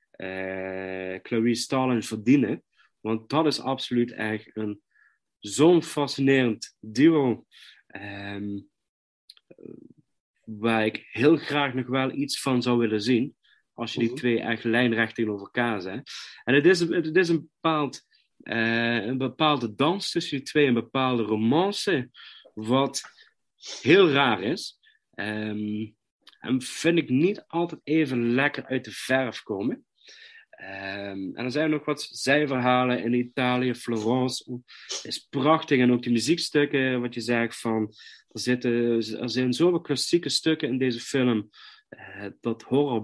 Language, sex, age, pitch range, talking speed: Dutch, male, 40-59, 110-140 Hz, 140 wpm